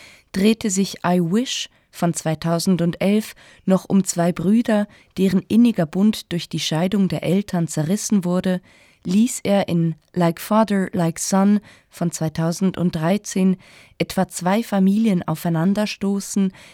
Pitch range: 170-200 Hz